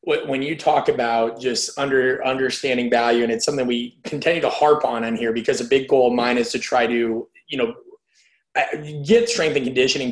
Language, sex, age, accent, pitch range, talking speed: English, male, 30-49, American, 120-150 Hz, 200 wpm